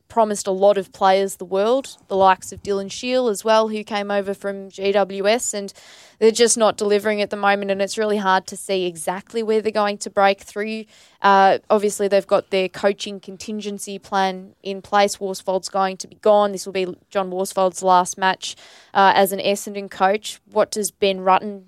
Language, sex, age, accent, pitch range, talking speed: English, female, 20-39, Australian, 195-210 Hz, 195 wpm